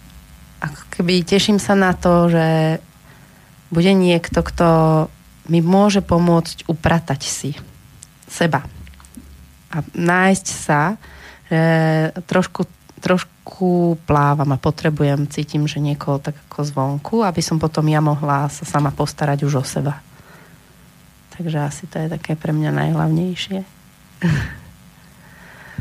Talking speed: 115 wpm